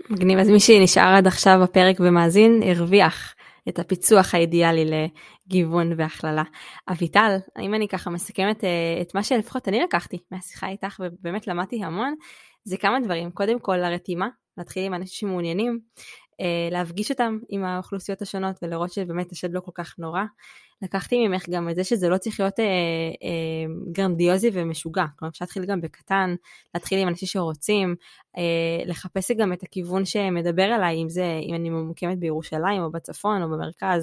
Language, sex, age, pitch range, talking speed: Hebrew, female, 20-39, 170-195 Hz, 155 wpm